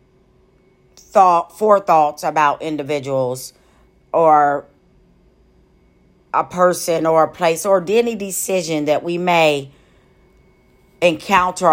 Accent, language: American, English